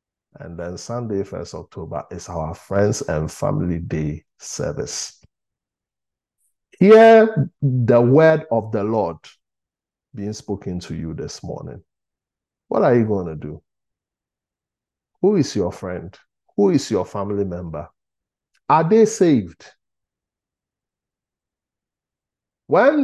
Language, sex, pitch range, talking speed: English, male, 100-155 Hz, 110 wpm